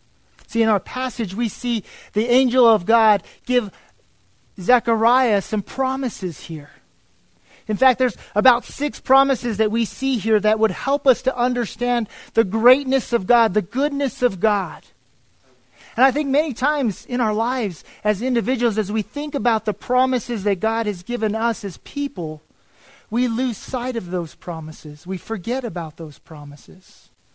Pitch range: 175-245 Hz